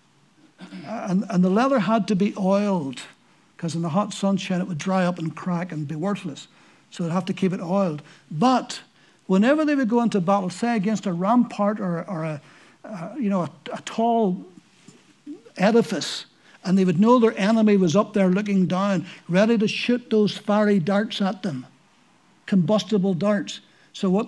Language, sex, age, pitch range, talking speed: English, male, 60-79, 195-240 Hz, 180 wpm